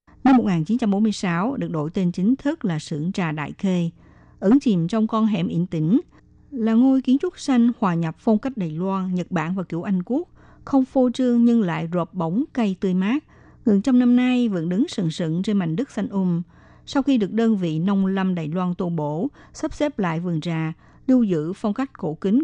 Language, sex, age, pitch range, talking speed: Vietnamese, female, 60-79, 175-235 Hz, 215 wpm